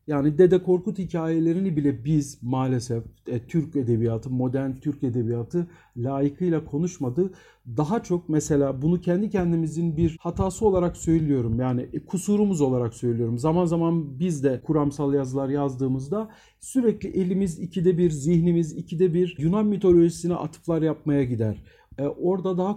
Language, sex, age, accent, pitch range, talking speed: Turkish, male, 50-69, native, 140-180 Hz, 130 wpm